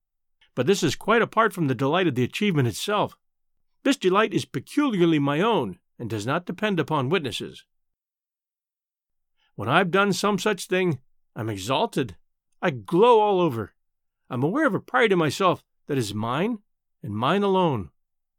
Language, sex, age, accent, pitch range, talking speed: English, male, 50-69, American, 125-205 Hz, 160 wpm